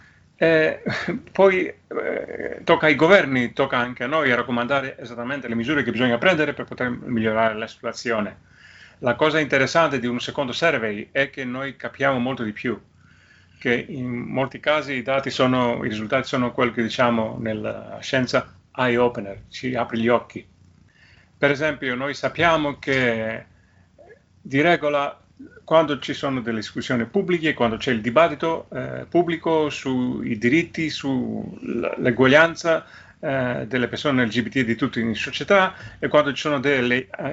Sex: male